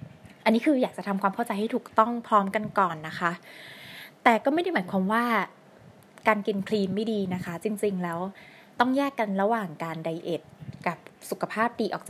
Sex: female